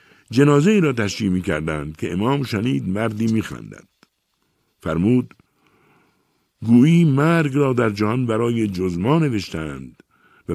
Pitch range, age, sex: 80-115 Hz, 60-79, male